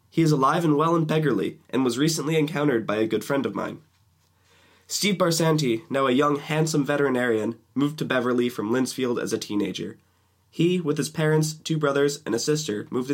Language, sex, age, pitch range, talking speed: English, male, 20-39, 110-150 Hz, 190 wpm